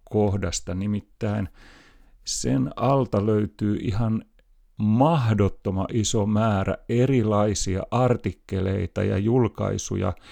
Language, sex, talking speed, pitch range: Finnish, male, 75 wpm, 100-120 Hz